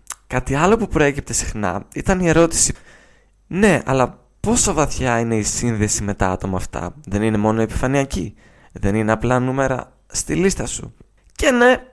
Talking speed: 160 wpm